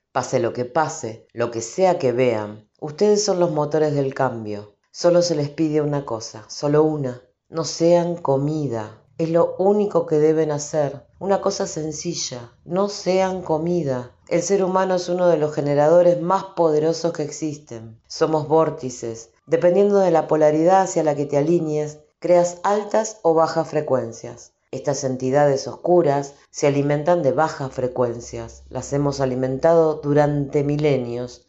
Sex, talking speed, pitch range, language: female, 150 wpm, 130-170 Hz, Spanish